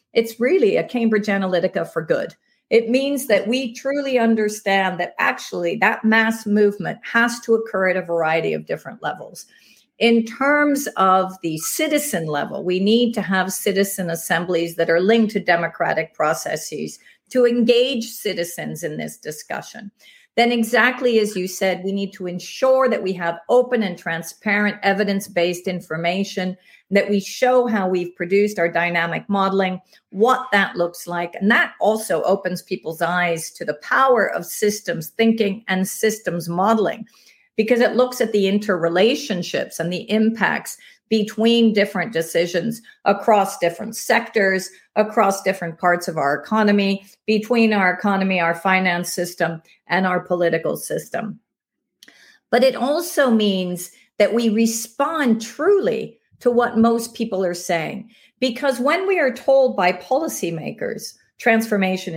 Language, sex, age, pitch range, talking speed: English, female, 50-69, 180-235 Hz, 145 wpm